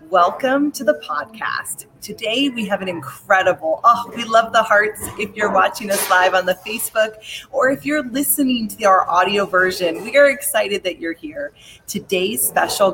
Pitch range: 185-260 Hz